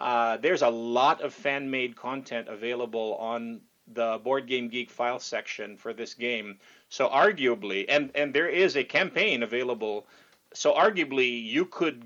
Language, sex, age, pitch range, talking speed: English, male, 40-59, 120-155 Hz, 160 wpm